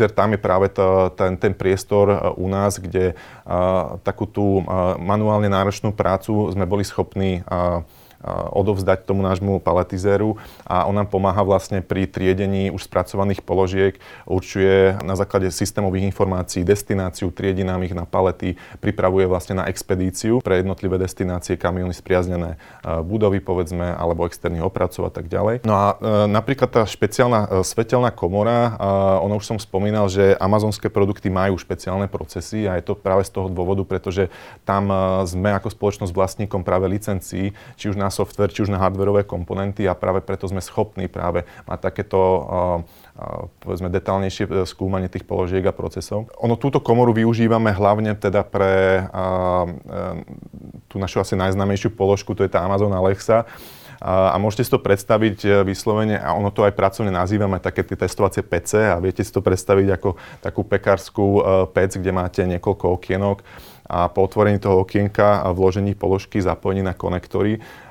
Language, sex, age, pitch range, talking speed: Slovak, male, 30-49, 95-105 Hz, 160 wpm